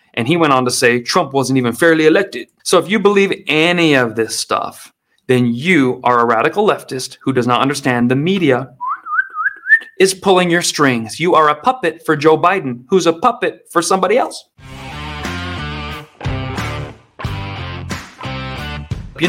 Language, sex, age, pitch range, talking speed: English, male, 30-49, 130-185 Hz, 150 wpm